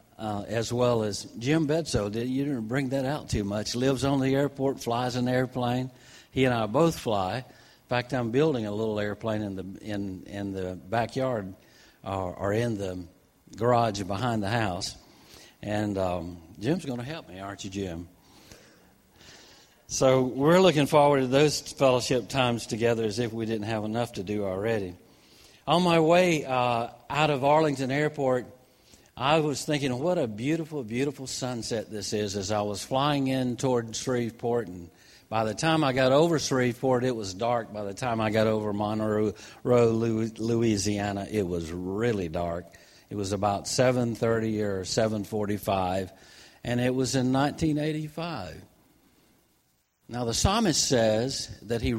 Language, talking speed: English, 165 wpm